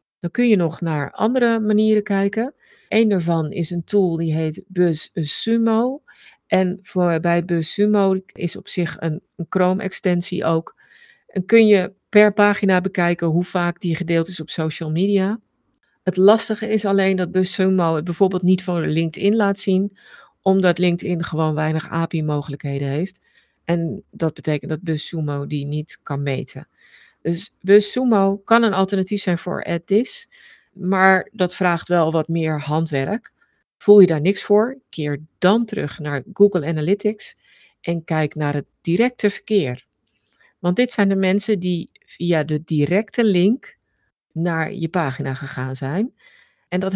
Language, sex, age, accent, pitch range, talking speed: Dutch, female, 50-69, Dutch, 165-205 Hz, 155 wpm